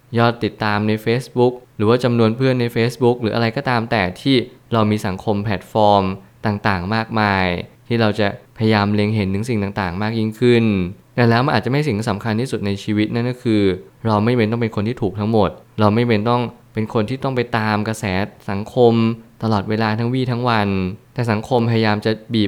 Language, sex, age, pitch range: Thai, male, 20-39, 105-120 Hz